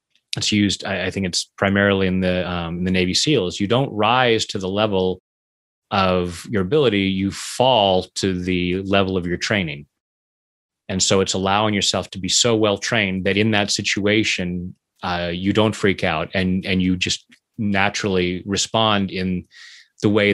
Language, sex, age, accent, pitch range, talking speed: English, male, 30-49, American, 95-115 Hz, 160 wpm